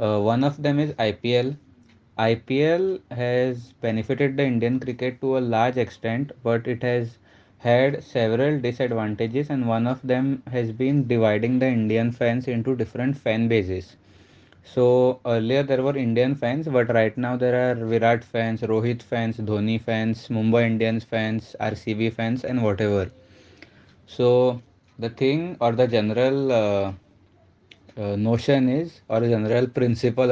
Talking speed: 145 wpm